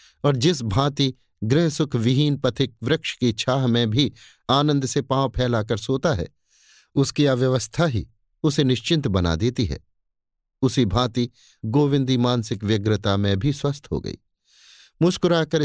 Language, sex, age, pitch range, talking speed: Hindi, male, 50-69, 110-145 Hz, 140 wpm